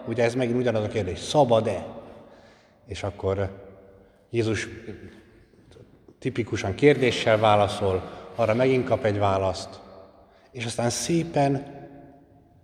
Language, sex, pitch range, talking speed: Hungarian, male, 100-125 Hz, 100 wpm